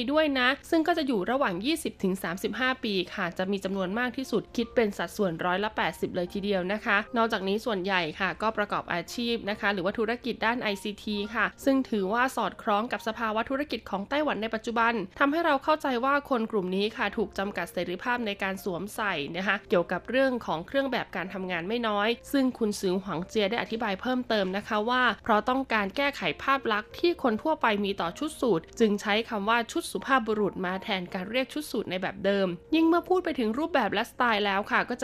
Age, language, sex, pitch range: 20-39, Thai, female, 195-250 Hz